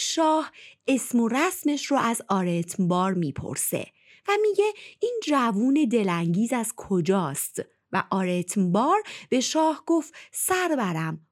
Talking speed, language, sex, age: 110 wpm, Persian, female, 30-49